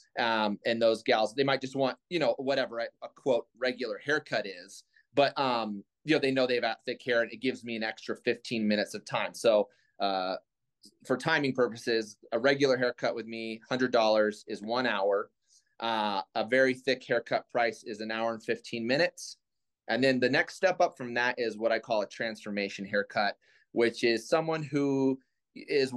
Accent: American